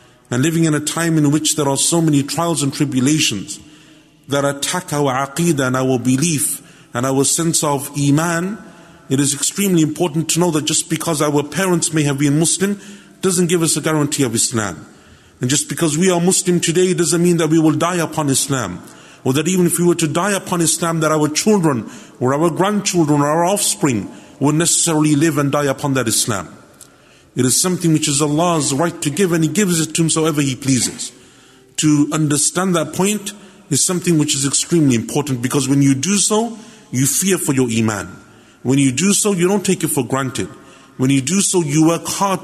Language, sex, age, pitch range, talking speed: English, male, 50-69, 140-170 Hz, 205 wpm